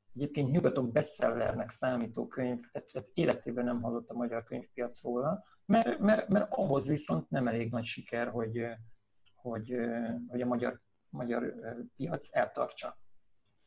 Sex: male